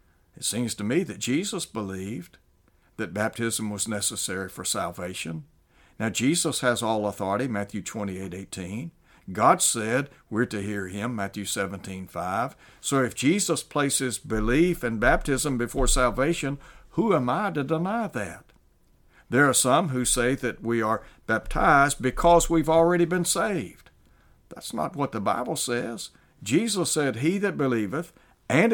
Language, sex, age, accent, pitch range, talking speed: English, male, 60-79, American, 95-130 Hz, 150 wpm